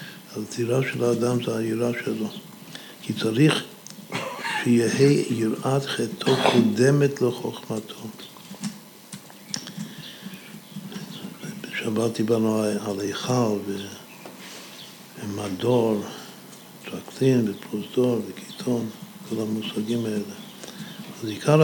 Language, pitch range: Hebrew, 110-185 Hz